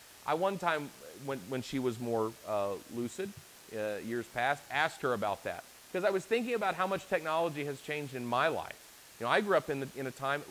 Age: 40-59